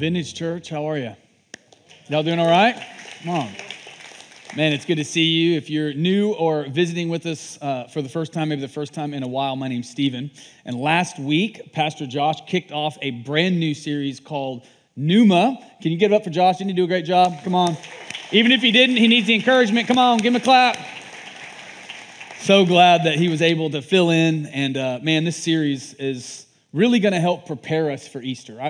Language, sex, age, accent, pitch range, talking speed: English, male, 30-49, American, 135-170 Hz, 215 wpm